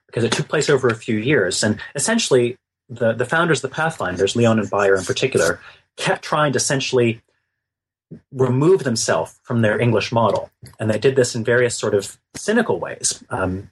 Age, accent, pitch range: 30-49, American, 100-130 Hz